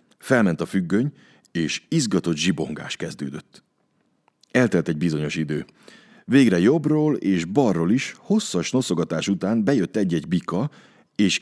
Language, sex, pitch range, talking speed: Hungarian, male, 75-100 Hz, 120 wpm